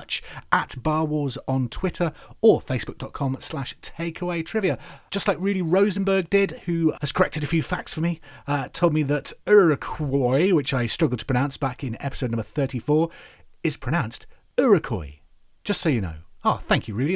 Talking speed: 170 wpm